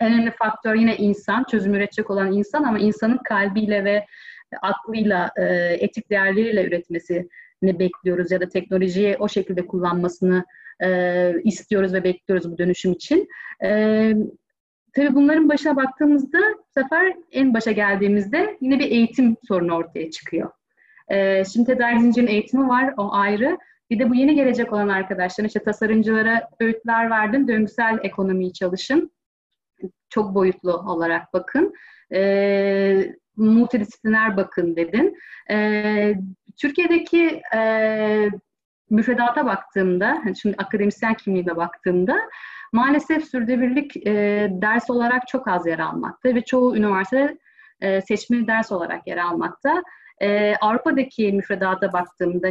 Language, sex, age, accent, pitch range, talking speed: Turkish, female, 30-49, native, 190-250 Hz, 120 wpm